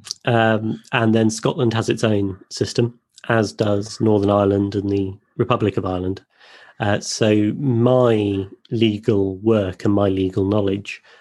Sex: male